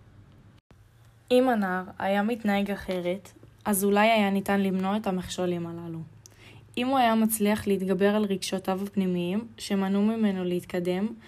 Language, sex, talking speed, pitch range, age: Hebrew, female, 130 wpm, 175-205 Hz, 10-29